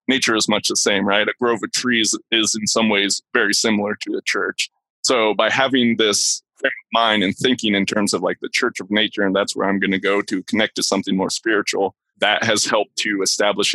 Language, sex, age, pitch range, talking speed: English, male, 20-39, 105-125 Hz, 225 wpm